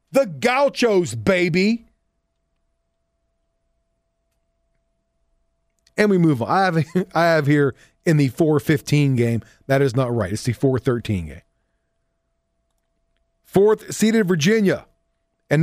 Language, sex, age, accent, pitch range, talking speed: English, male, 40-59, American, 130-205 Hz, 110 wpm